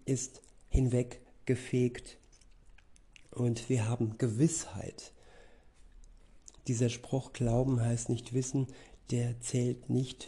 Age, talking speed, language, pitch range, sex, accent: 50-69, 90 wpm, German, 115-130 Hz, male, German